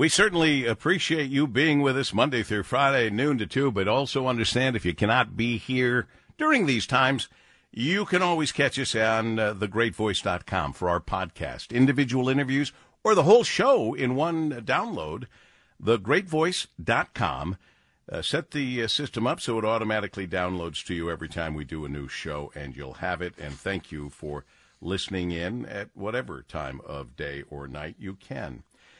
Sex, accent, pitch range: male, American, 105-155 Hz